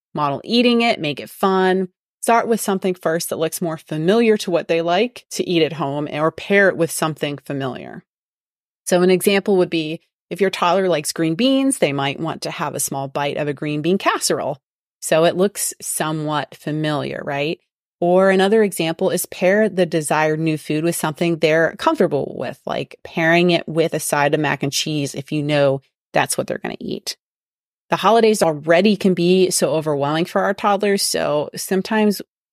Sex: female